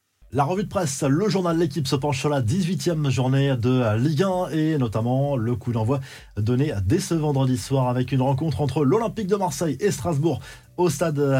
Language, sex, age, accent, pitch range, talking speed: French, male, 20-39, French, 125-150 Hz, 200 wpm